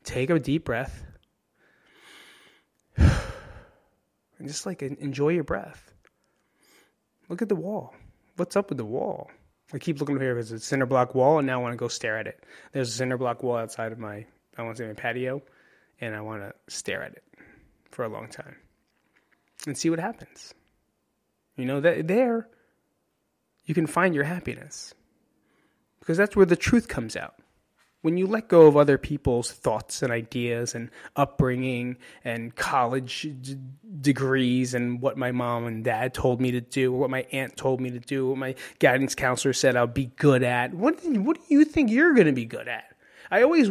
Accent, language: American, English